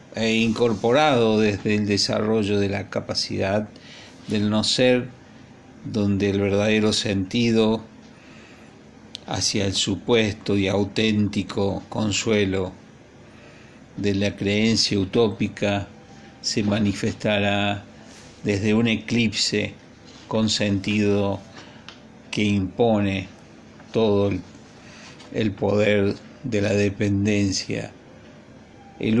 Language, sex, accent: Spanish, male, Argentinian